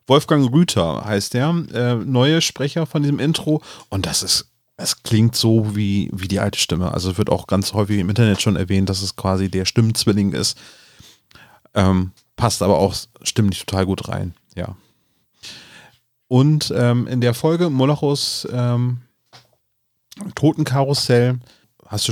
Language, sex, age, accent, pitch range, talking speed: German, male, 30-49, German, 100-130 Hz, 150 wpm